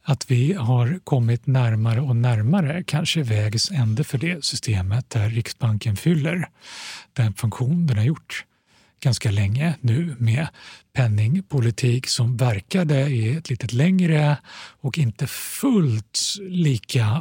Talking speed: 125 wpm